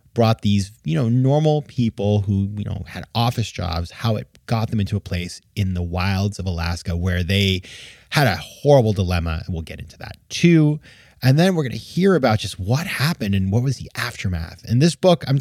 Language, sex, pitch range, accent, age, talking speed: English, male, 100-140 Hz, American, 30-49, 215 wpm